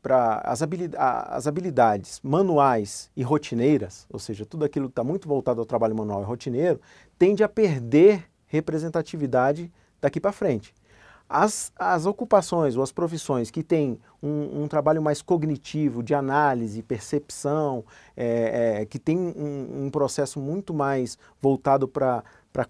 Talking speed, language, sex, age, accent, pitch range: 140 wpm, Portuguese, male, 40-59, Brazilian, 125-160 Hz